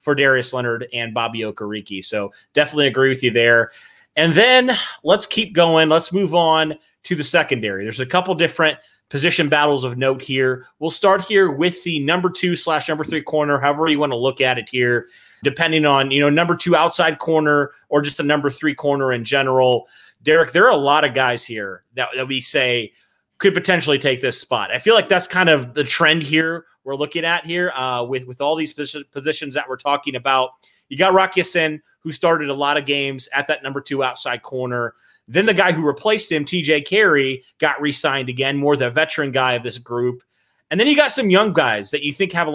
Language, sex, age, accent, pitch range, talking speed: English, male, 30-49, American, 130-165 Hz, 215 wpm